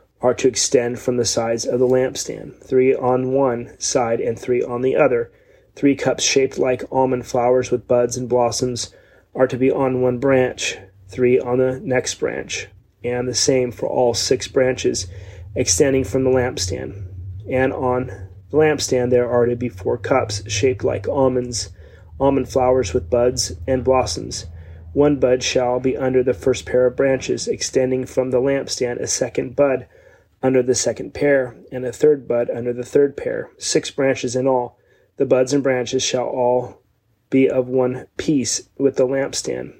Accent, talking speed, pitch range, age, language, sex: American, 175 wpm, 120-130 Hz, 30-49, English, male